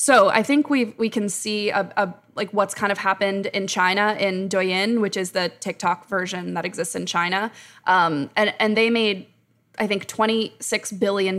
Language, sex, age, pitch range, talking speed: English, female, 20-39, 180-205 Hz, 195 wpm